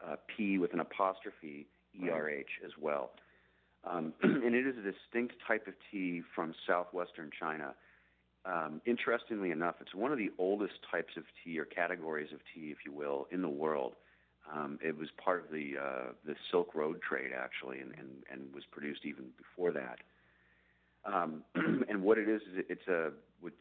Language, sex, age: English, male, 40-59